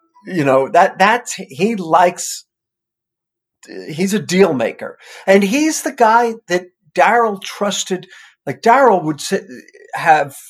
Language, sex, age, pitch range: English, male, 50-69, 150-205 Hz